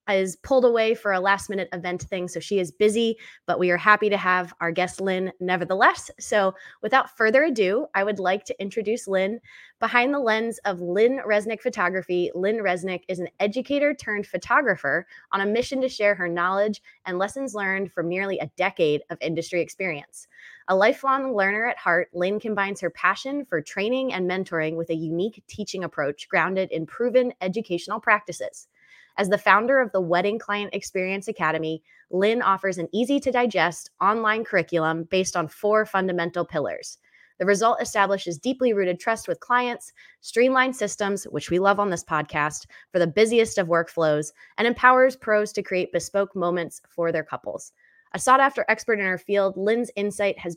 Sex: female